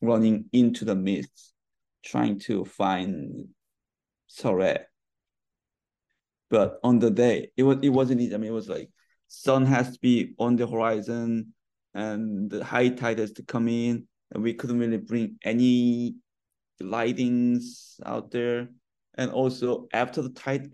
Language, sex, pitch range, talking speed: English, male, 115-125 Hz, 150 wpm